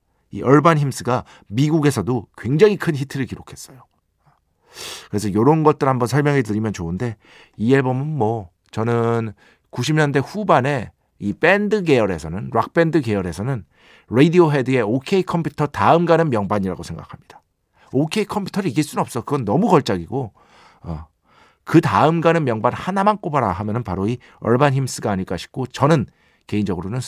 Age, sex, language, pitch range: 50-69, male, Korean, 105-165 Hz